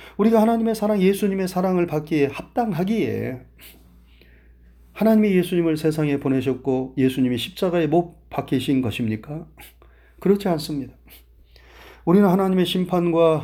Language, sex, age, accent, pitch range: Korean, male, 30-49, native, 115-190 Hz